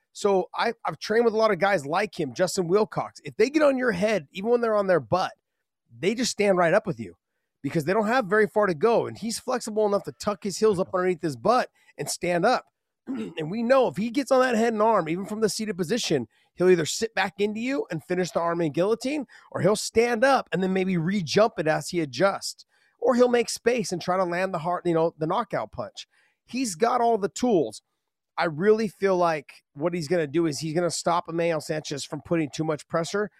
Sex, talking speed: male, 235 wpm